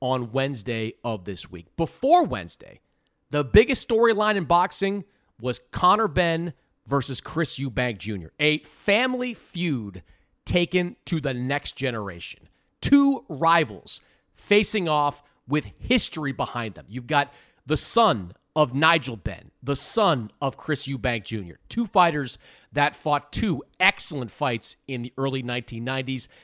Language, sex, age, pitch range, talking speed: English, male, 40-59, 125-165 Hz, 135 wpm